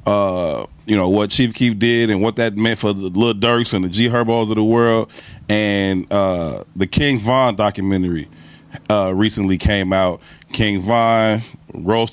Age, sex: 30-49, male